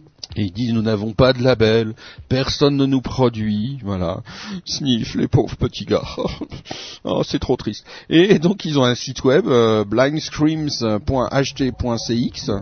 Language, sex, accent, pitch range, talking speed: French, male, French, 105-140 Hz, 150 wpm